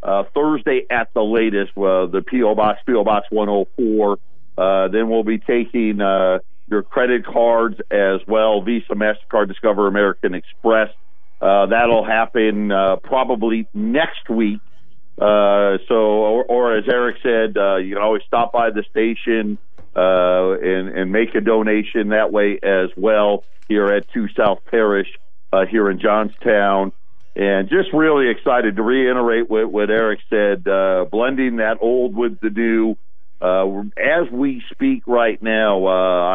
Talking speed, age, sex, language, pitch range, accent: 155 wpm, 50-69, male, English, 100-115 Hz, American